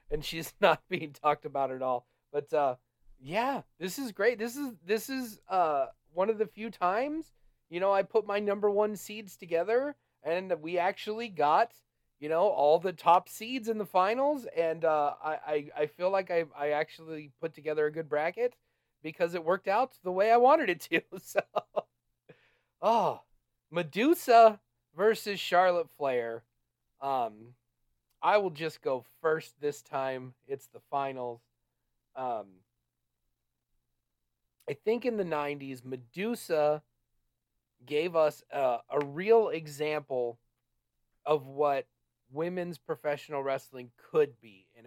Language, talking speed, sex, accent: English, 145 wpm, male, American